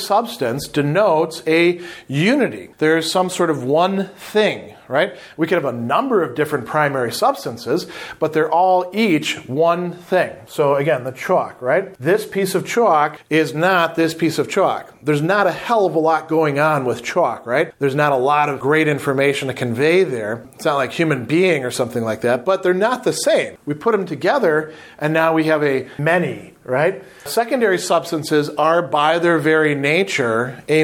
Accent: American